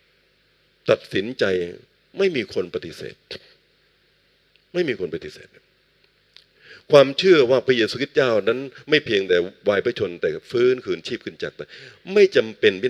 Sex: male